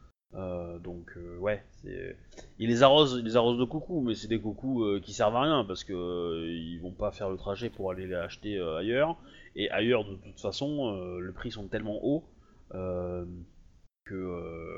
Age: 20-39